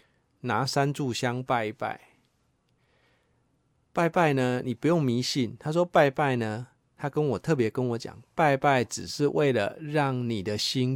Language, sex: Chinese, male